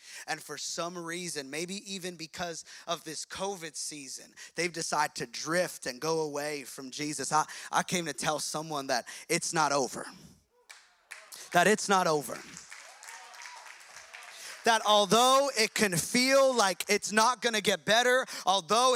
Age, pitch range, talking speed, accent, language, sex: 30-49, 215-290 Hz, 145 wpm, American, English, male